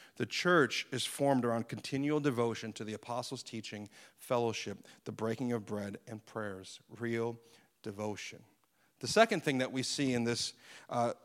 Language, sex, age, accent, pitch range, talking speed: English, male, 40-59, American, 120-155 Hz, 155 wpm